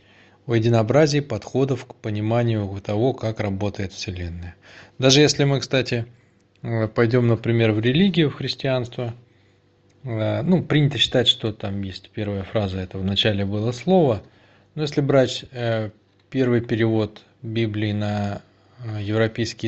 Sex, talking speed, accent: male, 120 wpm, native